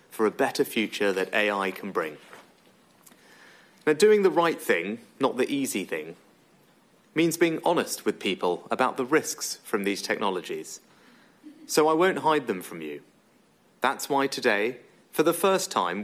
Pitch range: 125-155 Hz